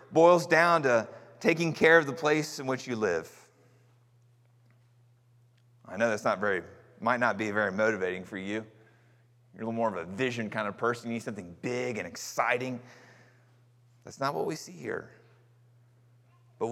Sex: male